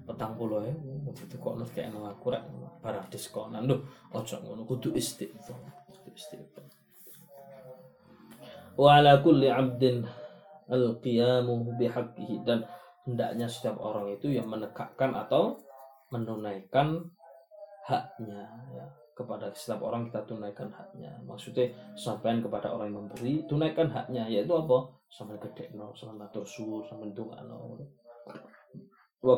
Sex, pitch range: male, 115-170 Hz